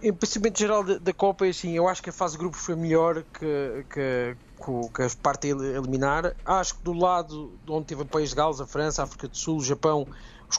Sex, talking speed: male, 230 wpm